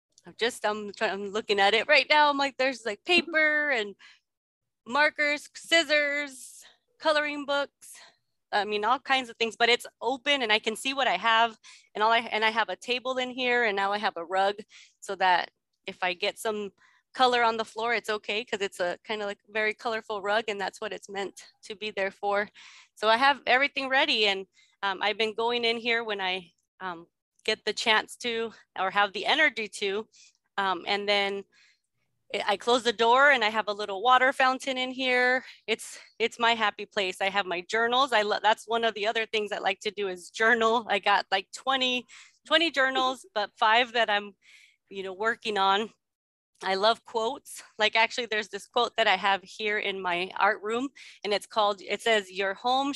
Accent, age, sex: American, 20-39, female